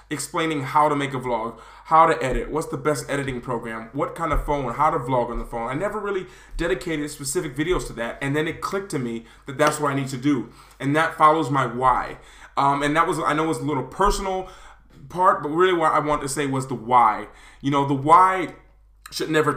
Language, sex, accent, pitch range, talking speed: English, male, American, 130-150 Hz, 240 wpm